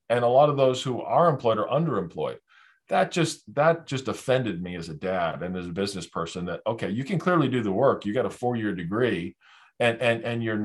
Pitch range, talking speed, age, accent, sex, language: 95-130 Hz, 230 wpm, 40-59, American, male, English